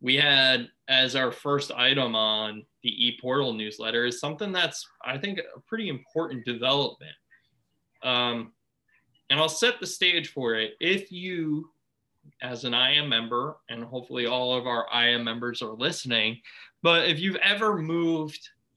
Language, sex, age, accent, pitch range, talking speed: English, male, 20-39, American, 120-150 Hz, 150 wpm